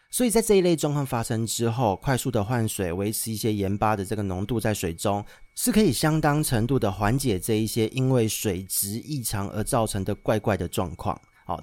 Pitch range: 100-130 Hz